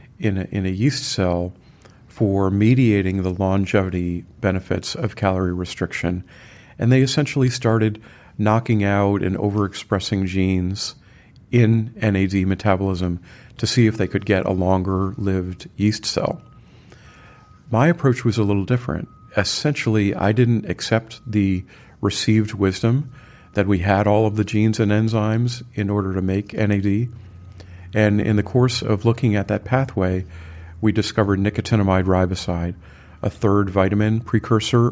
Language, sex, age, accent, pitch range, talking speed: English, male, 40-59, American, 95-115 Hz, 140 wpm